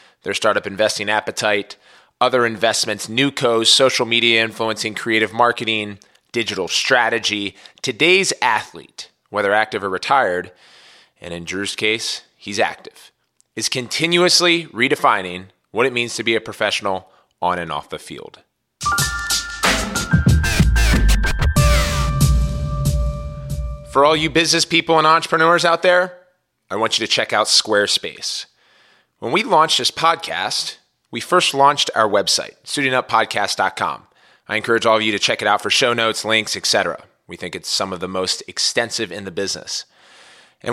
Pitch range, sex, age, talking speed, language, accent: 105-150 Hz, male, 20-39, 140 wpm, English, American